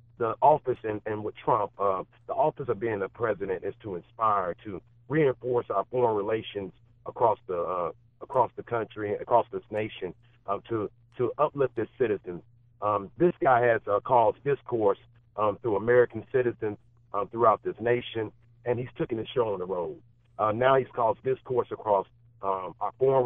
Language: English